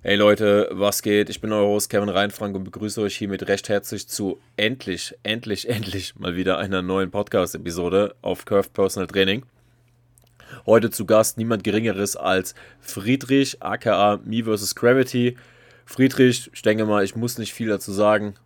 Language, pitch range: German, 100-120 Hz